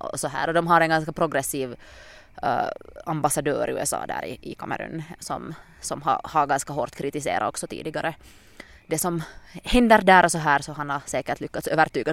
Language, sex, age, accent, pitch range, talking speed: English, female, 20-39, Finnish, 140-165 Hz, 200 wpm